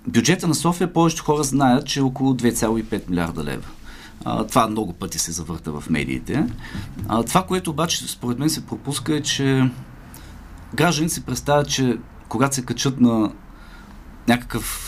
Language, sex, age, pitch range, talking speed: Bulgarian, male, 40-59, 95-130 Hz, 145 wpm